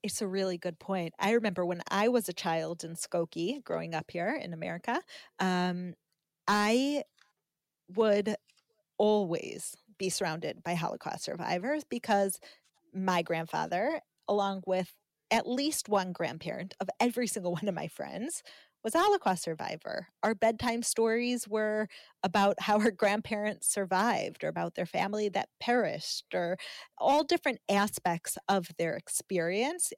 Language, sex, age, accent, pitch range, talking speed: English, female, 30-49, American, 180-225 Hz, 140 wpm